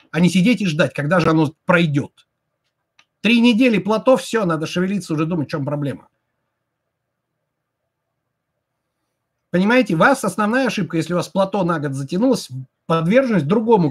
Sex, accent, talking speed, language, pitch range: male, native, 145 wpm, Russian, 155-200 Hz